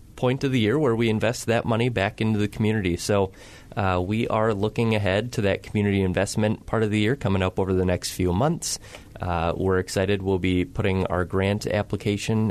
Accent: American